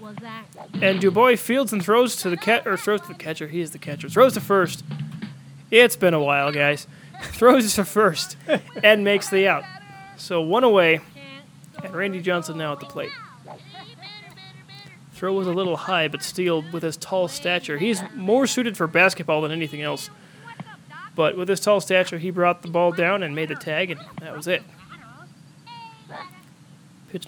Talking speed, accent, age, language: 175 wpm, American, 20-39, English